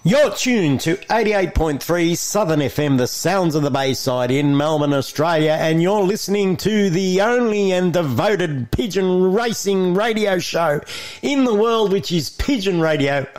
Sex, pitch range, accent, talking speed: male, 140-200 Hz, Australian, 150 wpm